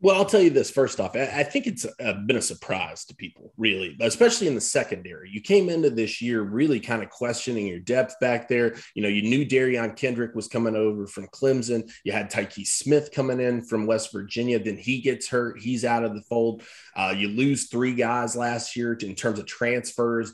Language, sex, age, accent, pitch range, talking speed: English, male, 30-49, American, 105-125 Hz, 215 wpm